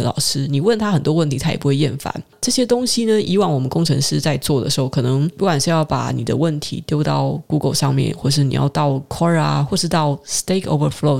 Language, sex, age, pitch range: Chinese, female, 20-39, 140-180 Hz